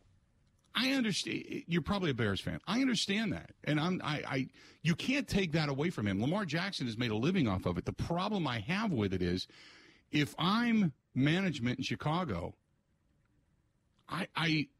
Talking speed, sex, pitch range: 175 wpm, male, 130-170 Hz